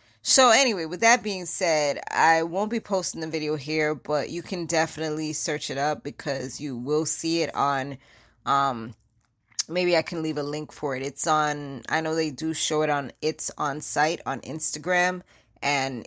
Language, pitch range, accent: English, 145-180 Hz, American